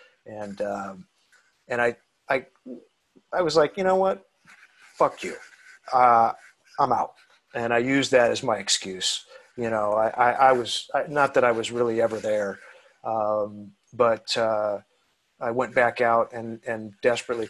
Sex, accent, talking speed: male, American, 160 wpm